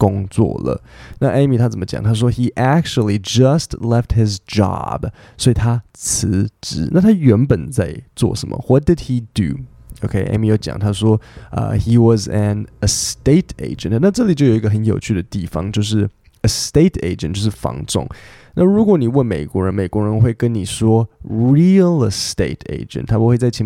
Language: Chinese